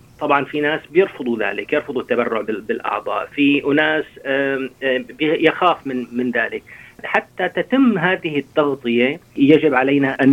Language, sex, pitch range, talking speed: Arabic, male, 135-170 Hz, 120 wpm